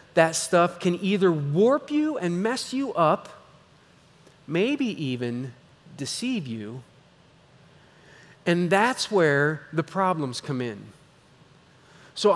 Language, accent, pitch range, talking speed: English, American, 155-220 Hz, 105 wpm